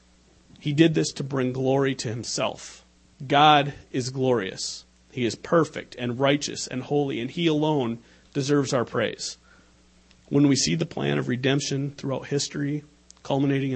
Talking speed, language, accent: 150 wpm, English, American